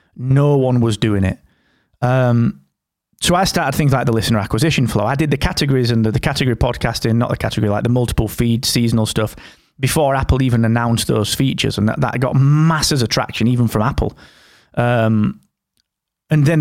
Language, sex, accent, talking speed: English, male, British, 190 wpm